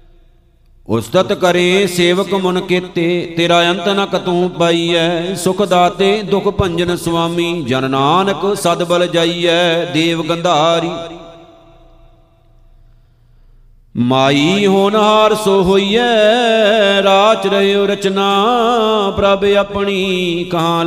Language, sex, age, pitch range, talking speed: Punjabi, male, 50-69, 170-195 Hz, 95 wpm